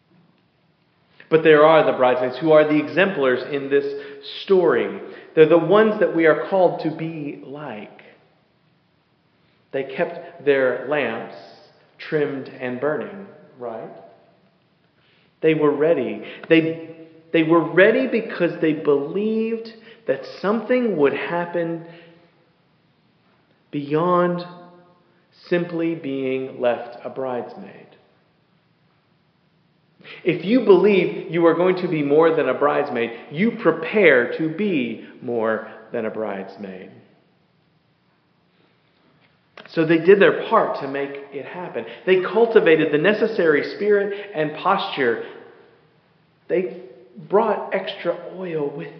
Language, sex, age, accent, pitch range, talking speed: English, male, 40-59, American, 145-185 Hz, 110 wpm